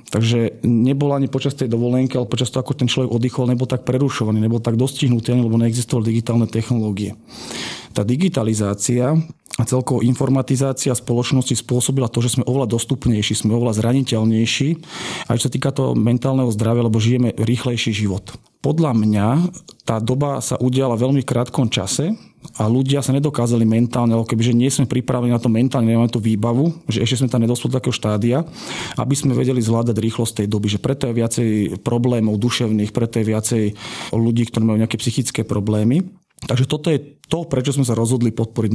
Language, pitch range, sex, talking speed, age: Slovak, 115-130 Hz, male, 175 wpm, 40-59